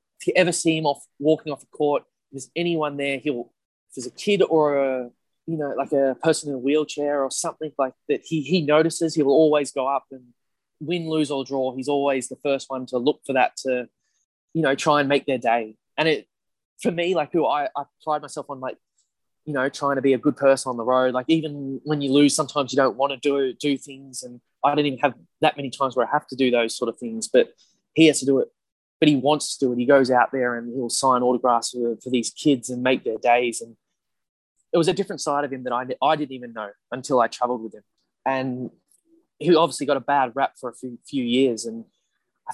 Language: English